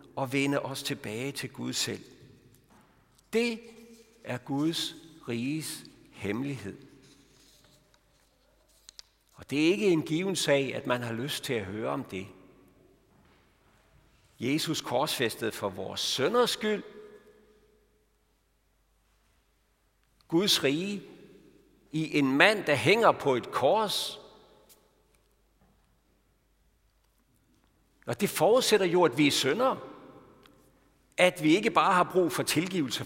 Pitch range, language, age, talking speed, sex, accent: 125-175 Hz, Danish, 60-79, 110 wpm, male, native